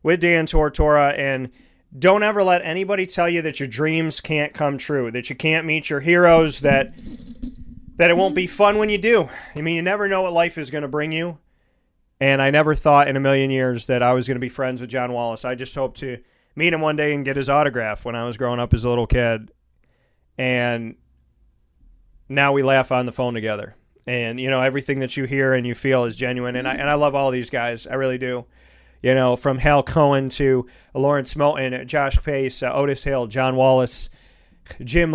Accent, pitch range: American, 125-150 Hz